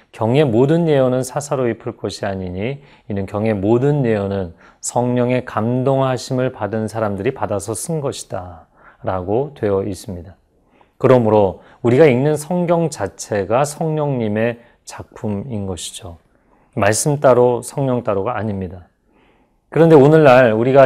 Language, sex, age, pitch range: Korean, male, 30-49, 105-140 Hz